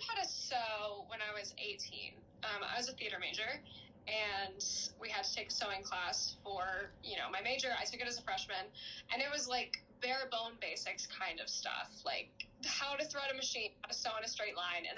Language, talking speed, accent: English, 225 wpm, American